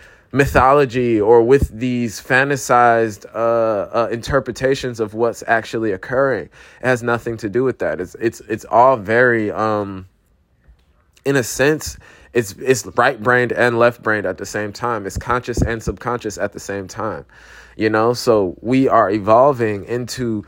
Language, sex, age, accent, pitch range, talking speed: English, male, 20-39, American, 110-125 Hz, 150 wpm